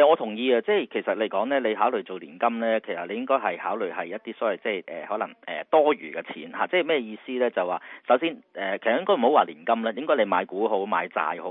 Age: 40-59